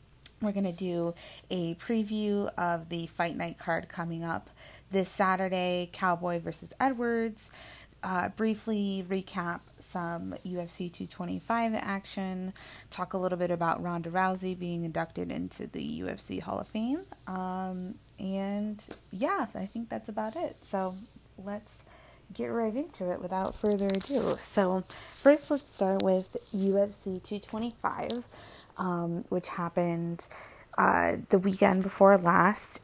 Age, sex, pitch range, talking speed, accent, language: 20-39, female, 175-205 Hz, 130 wpm, American, English